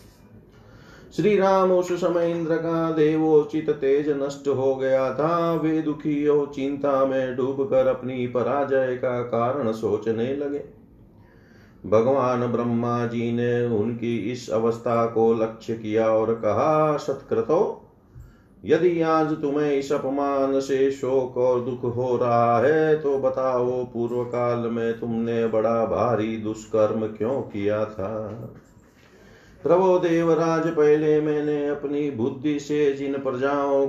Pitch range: 120-145 Hz